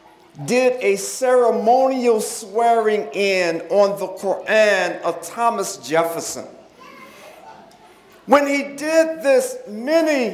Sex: male